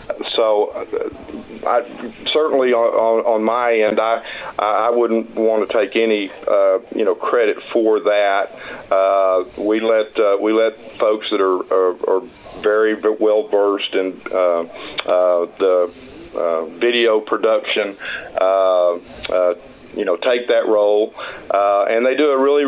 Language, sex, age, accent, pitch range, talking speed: English, male, 40-59, American, 105-120 Hz, 145 wpm